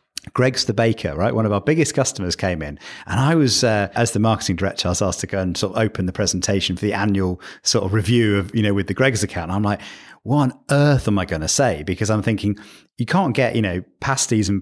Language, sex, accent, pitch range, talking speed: English, male, British, 100-130 Hz, 260 wpm